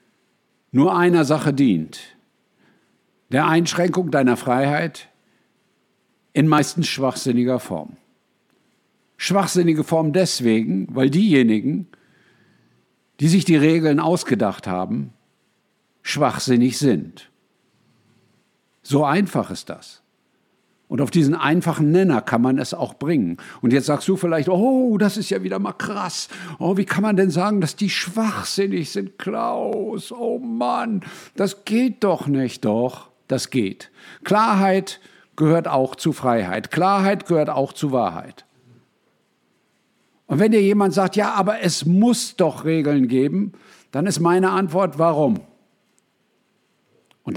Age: 60-79